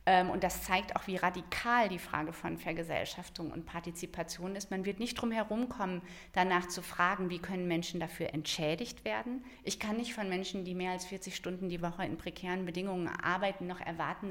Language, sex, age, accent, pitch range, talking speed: English, female, 50-69, German, 170-195 Hz, 190 wpm